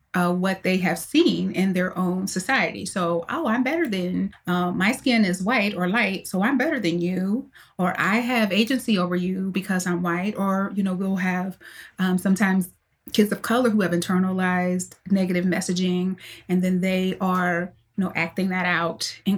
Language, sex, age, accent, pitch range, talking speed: English, female, 30-49, American, 180-205 Hz, 185 wpm